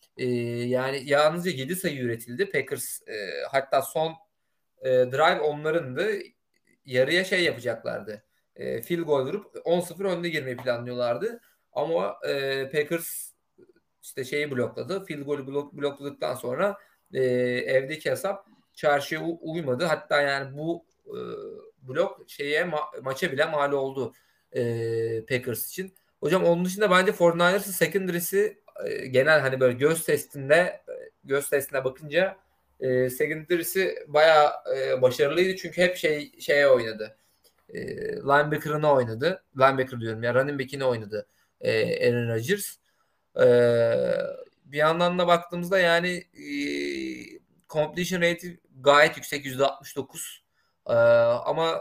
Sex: male